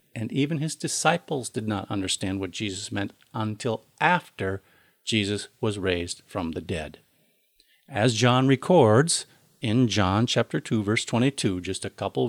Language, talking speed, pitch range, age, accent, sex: English, 145 wpm, 100-140 Hz, 50-69, American, male